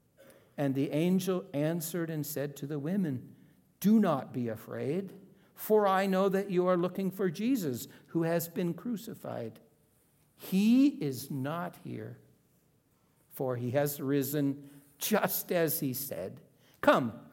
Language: English